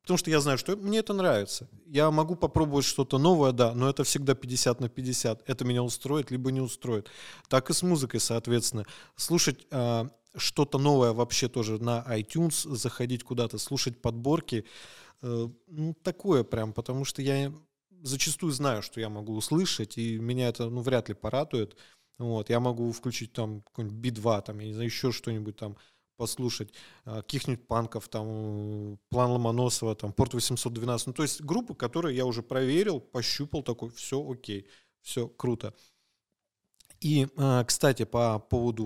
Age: 20-39